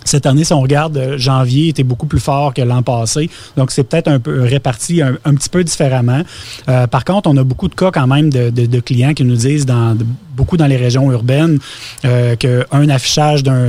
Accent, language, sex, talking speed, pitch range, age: Canadian, French, male, 230 wpm, 125-150 Hz, 30-49